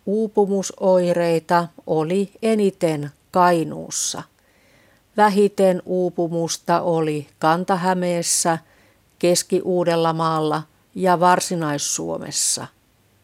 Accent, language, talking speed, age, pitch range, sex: Finnish, Russian, 55 wpm, 50-69, 155-190 Hz, female